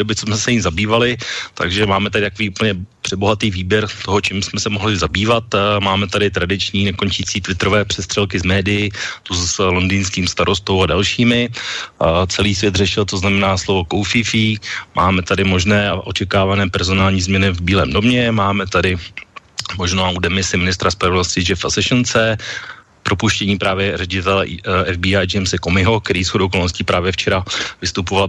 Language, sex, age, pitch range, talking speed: Slovak, male, 30-49, 95-105 Hz, 150 wpm